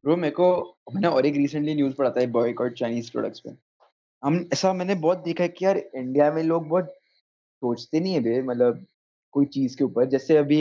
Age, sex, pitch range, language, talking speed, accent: 20-39, male, 125-160 Hz, Hindi, 190 wpm, native